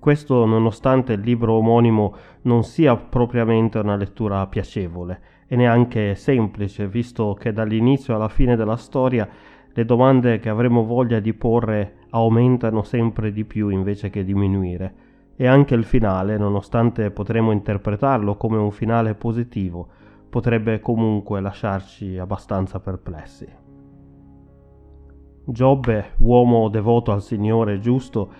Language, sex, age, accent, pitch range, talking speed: Italian, male, 30-49, native, 100-120 Hz, 120 wpm